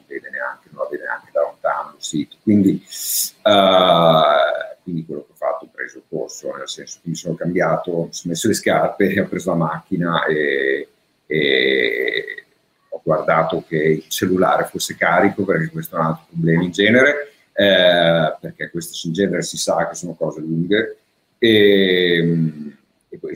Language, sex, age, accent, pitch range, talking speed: Italian, male, 50-69, native, 85-115 Hz, 165 wpm